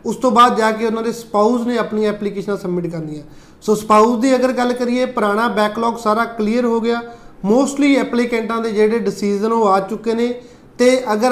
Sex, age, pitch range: male, 30-49, 210-235 Hz